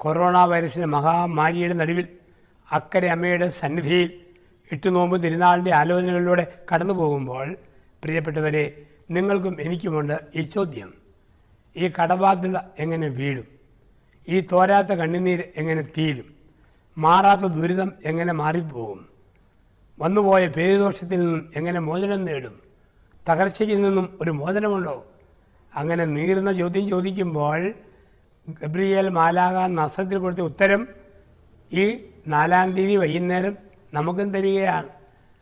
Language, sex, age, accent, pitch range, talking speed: Malayalam, male, 60-79, native, 150-185 Hz, 90 wpm